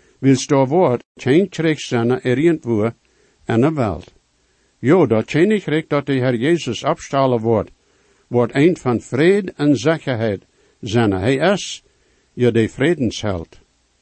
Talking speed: 140 wpm